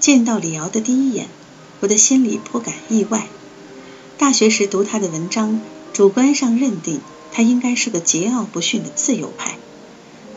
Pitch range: 185-245 Hz